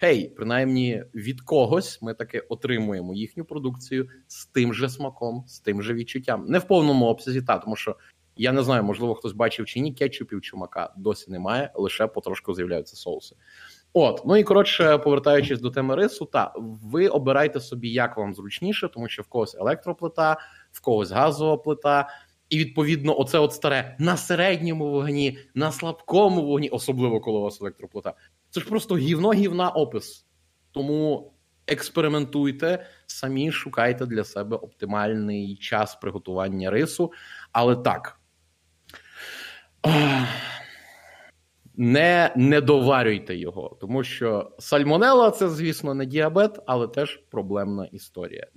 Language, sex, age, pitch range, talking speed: Ukrainian, male, 20-39, 105-150 Hz, 140 wpm